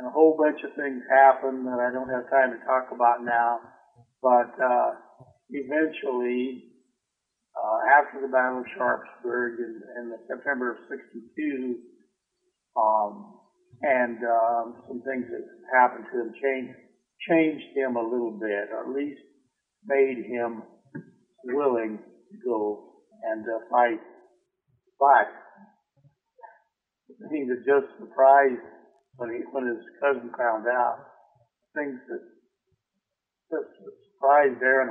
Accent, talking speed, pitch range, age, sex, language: American, 130 wpm, 120-150 Hz, 60-79, male, English